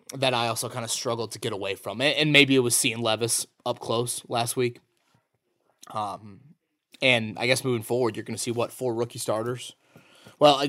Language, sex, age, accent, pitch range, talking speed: English, male, 20-39, American, 105-130 Hz, 200 wpm